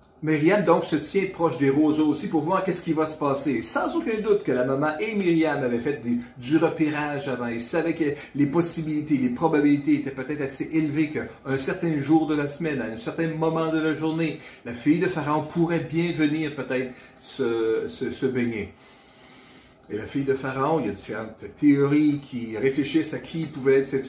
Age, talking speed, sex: 50-69, 205 wpm, male